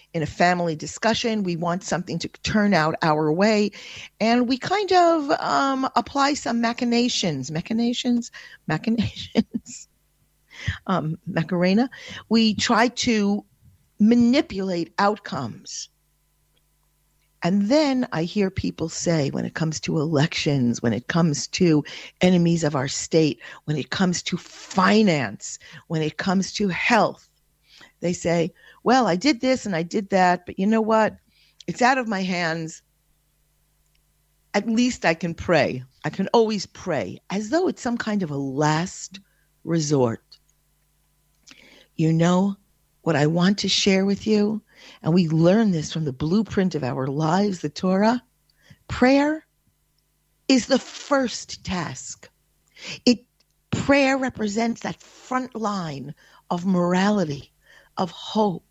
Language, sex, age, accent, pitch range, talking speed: English, female, 50-69, American, 165-230 Hz, 135 wpm